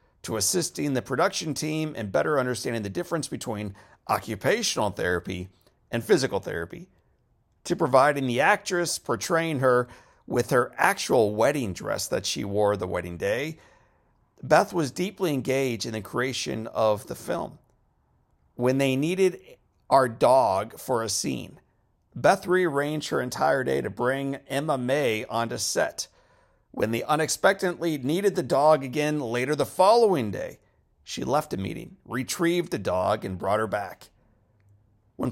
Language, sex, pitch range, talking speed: English, male, 115-155 Hz, 145 wpm